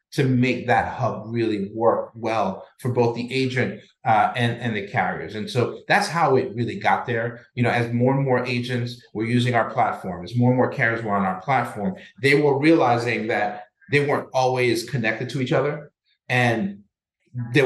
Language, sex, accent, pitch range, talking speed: English, male, American, 105-130 Hz, 195 wpm